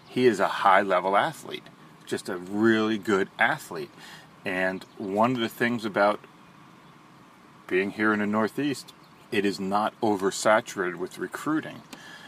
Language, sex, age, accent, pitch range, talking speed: English, male, 30-49, American, 100-115 Hz, 130 wpm